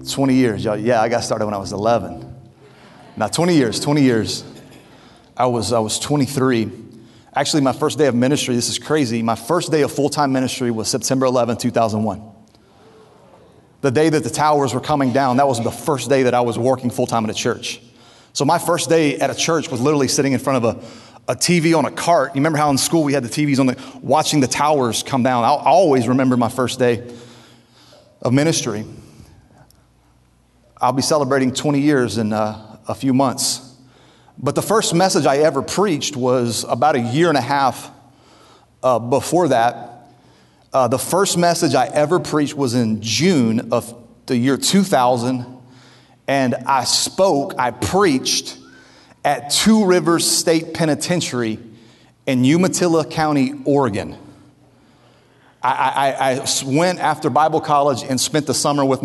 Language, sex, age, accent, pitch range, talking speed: English, male, 30-49, American, 120-150 Hz, 175 wpm